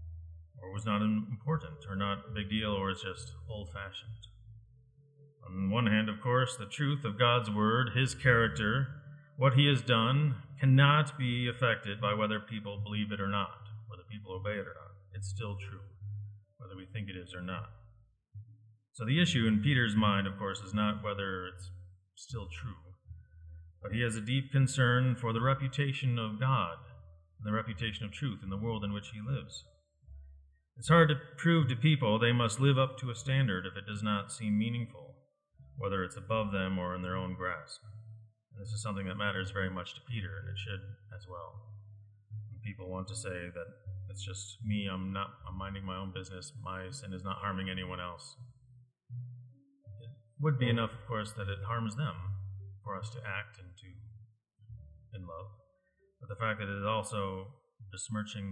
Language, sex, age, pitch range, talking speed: English, male, 40-59, 95-120 Hz, 190 wpm